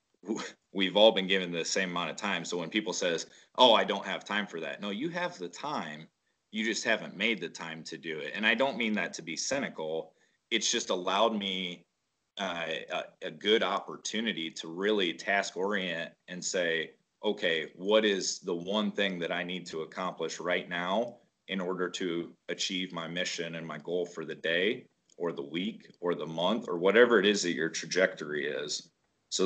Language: English